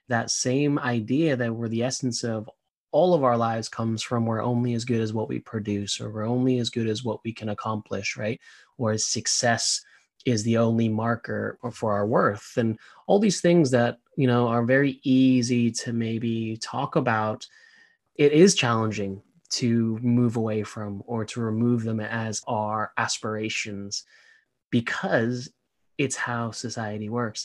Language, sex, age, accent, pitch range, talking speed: English, male, 20-39, American, 110-140 Hz, 165 wpm